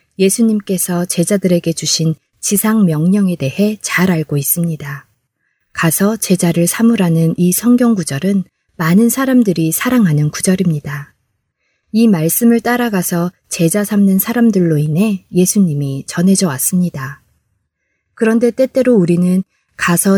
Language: Korean